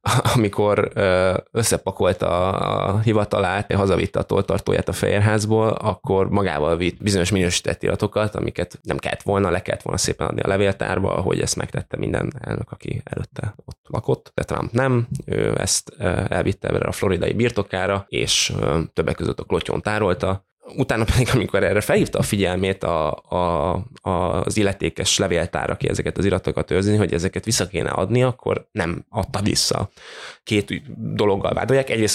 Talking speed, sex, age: 150 wpm, male, 20-39